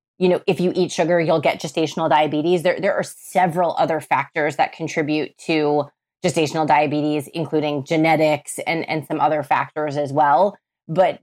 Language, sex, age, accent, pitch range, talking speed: English, female, 20-39, American, 155-185 Hz, 165 wpm